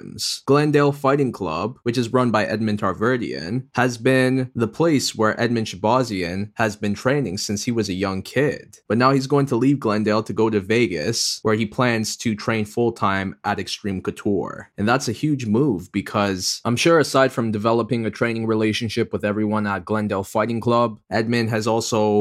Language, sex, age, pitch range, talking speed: English, male, 20-39, 105-125 Hz, 185 wpm